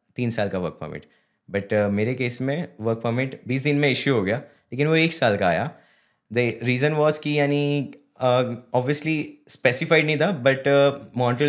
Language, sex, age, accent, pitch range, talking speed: Hindi, male, 20-39, native, 110-140 Hz, 185 wpm